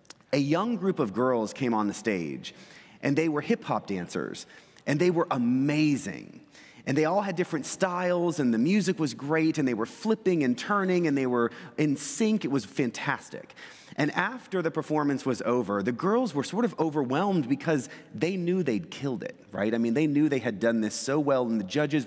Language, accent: English, American